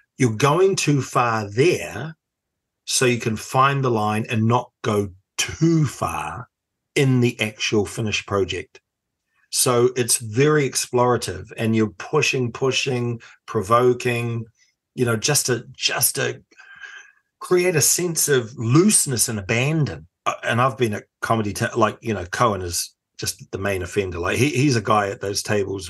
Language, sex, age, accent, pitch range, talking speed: English, male, 40-59, British, 110-180 Hz, 155 wpm